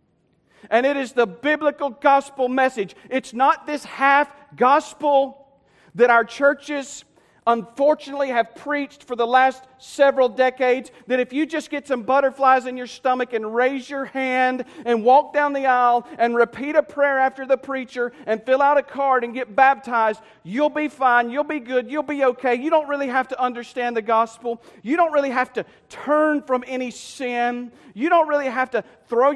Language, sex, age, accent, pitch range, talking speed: English, male, 40-59, American, 230-275 Hz, 180 wpm